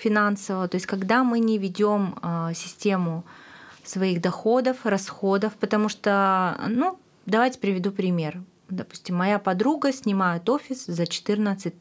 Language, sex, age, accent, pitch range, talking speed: Russian, female, 30-49, native, 185-235 Hz, 120 wpm